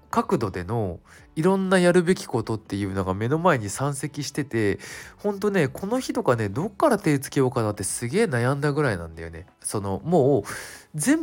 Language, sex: Japanese, male